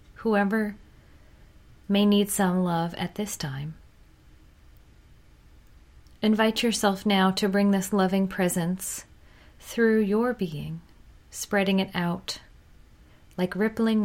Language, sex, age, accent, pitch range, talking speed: English, female, 30-49, American, 175-205 Hz, 105 wpm